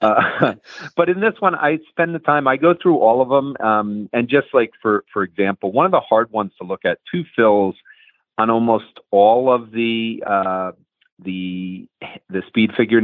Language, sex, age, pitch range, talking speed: English, male, 40-59, 100-130 Hz, 195 wpm